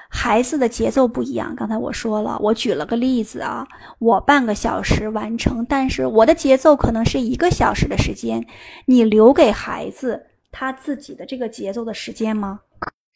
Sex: female